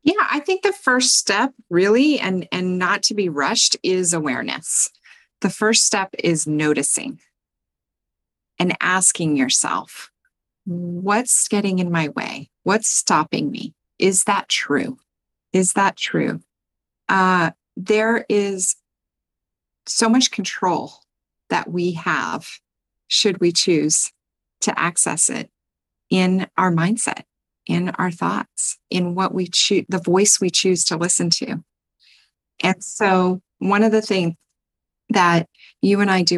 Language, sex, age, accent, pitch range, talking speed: English, female, 40-59, American, 165-200 Hz, 130 wpm